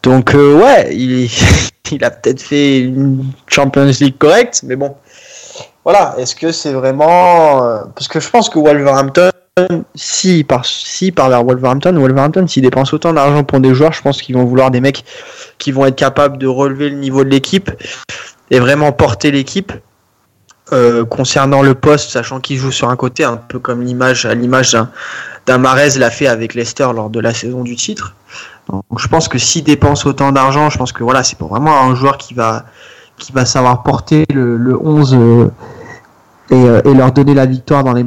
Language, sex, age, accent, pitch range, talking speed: French, male, 20-39, French, 125-145 Hz, 195 wpm